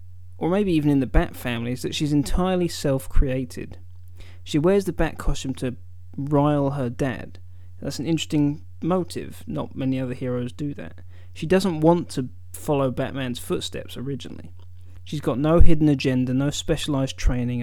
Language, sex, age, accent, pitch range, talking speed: English, male, 20-39, British, 105-150 Hz, 160 wpm